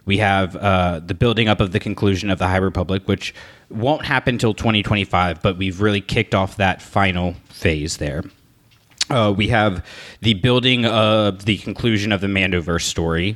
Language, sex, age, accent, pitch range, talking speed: English, male, 30-49, American, 95-110 Hz, 175 wpm